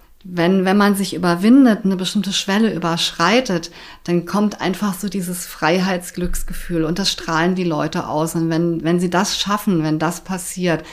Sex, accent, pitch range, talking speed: female, German, 165-195 Hz, 165 wpm